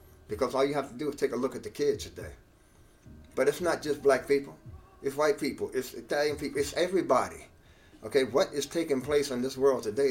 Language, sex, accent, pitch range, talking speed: English, male, American, 130-190 Hz, 220 wpm